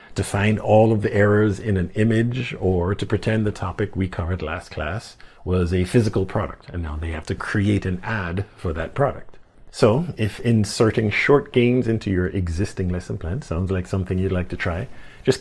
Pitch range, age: 90-115 Hz, 50-69